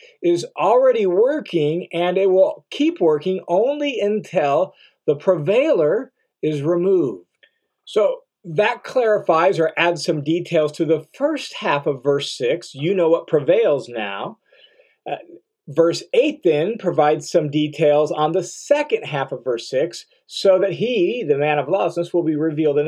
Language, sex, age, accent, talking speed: English, male, 50-69, American, 150 wpm